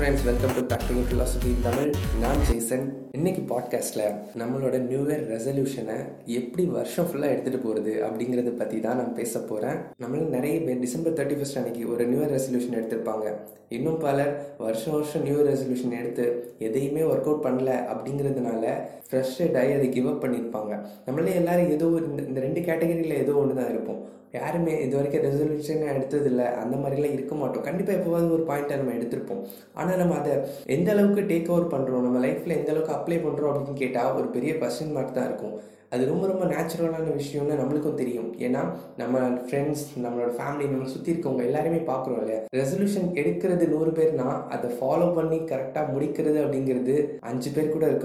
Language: Tamil